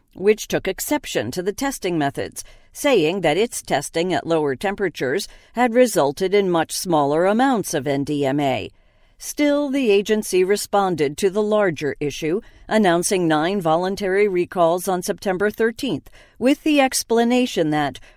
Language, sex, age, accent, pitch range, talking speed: English, female, 50-69, American, 150-205 Hz, 135 wpm